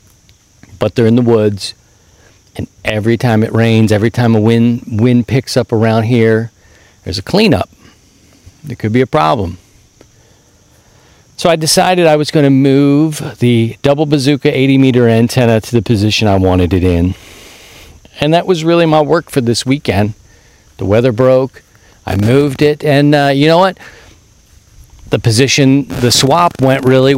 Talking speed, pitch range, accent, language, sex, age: 160 wpm, 105-130 Hz, American, English, male, 50-69